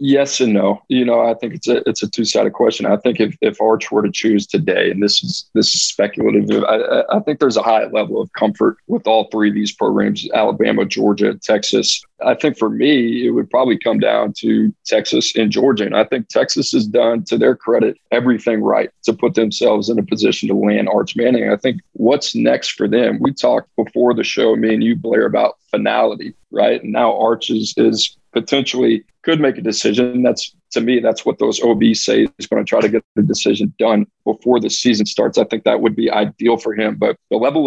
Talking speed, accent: 225 wpm, American